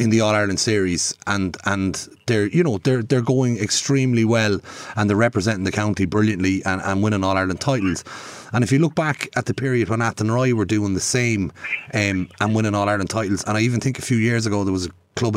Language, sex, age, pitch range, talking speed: English, male, 30-49, 105-135 Hz, 235 wpm